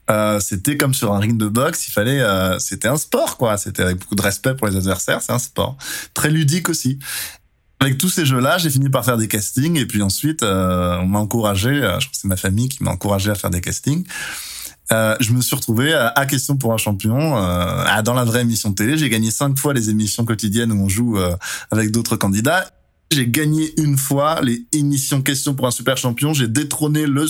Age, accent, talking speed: 20-39, French, 230 wpm